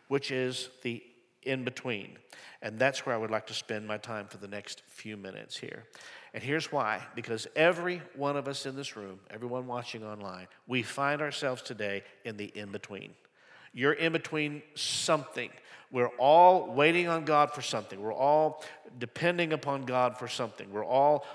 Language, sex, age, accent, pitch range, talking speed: English, male, 50-69, American, 120-165 Hz, 170 wpm